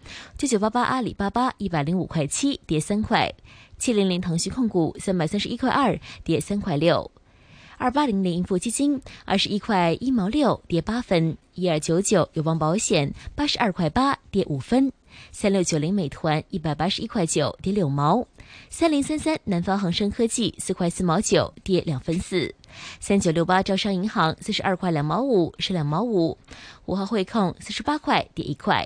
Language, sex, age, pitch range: Chinese, female, 20-39, 165-230 Hz